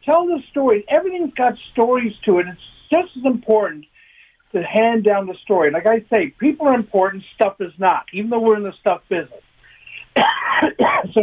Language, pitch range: English, 175-255 Hz